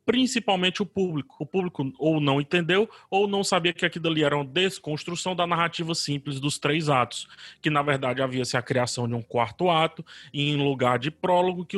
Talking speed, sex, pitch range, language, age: 195 wpm, male, 135-170 Hz, Portuguese, 20-39